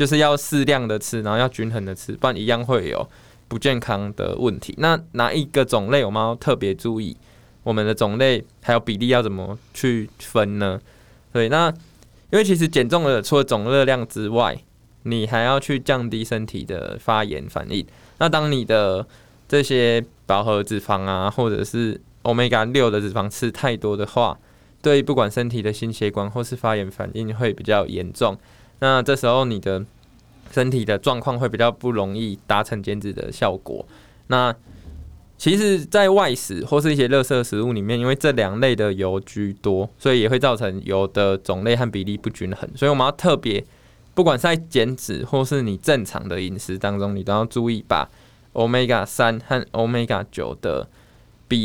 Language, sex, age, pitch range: Chinese, male, 20-39, 105-130 Hz